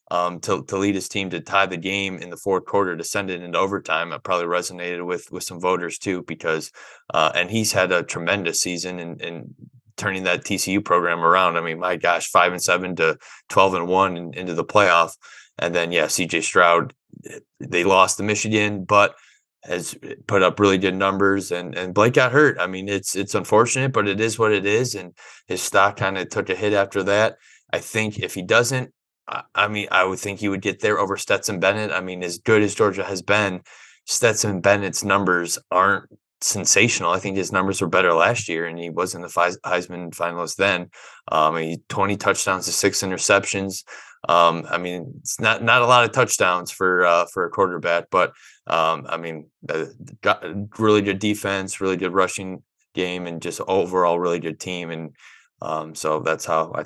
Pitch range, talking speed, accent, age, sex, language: 85-100 Hz, 200 wpm, American, 20-39, male, English